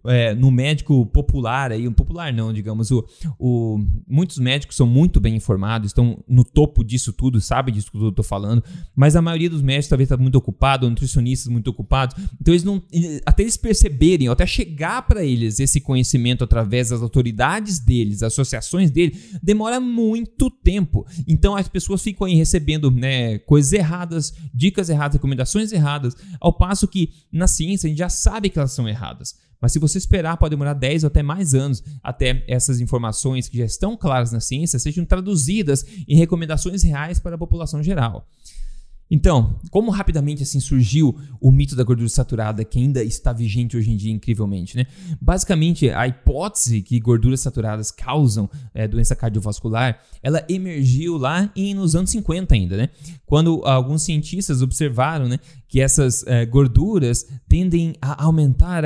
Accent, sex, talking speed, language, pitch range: Brazilian, male, 170 wpm, Portuguese, 120-165 Hz